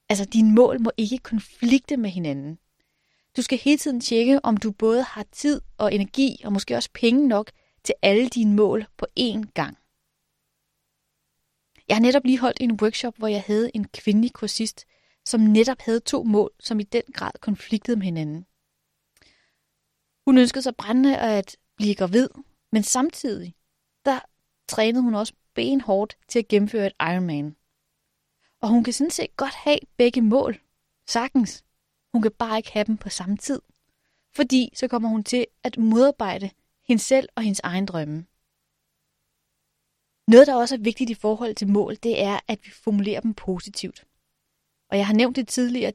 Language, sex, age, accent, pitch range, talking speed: Danish, female, 30-49, native, 205-245 Hz, 170 wpm